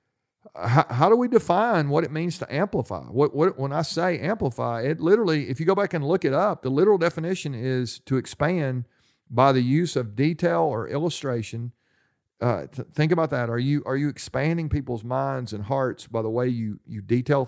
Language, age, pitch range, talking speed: English, 40-59, 115-145 Hz, 200 wpm